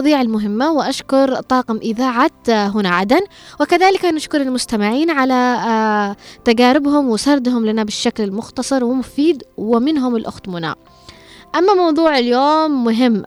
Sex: female